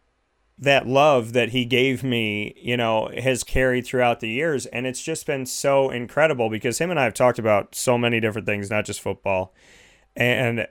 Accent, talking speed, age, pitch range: American, 190 wpm, 30-49, 105-125 Hz